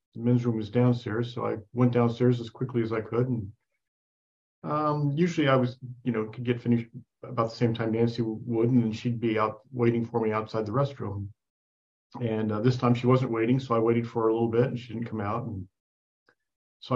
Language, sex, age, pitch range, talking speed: English, male, 40-59, 110-125 Hz, 220 wpm